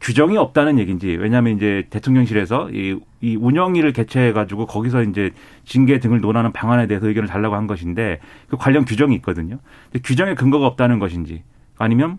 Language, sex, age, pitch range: Korean, male, 30-49, 110-160 Hz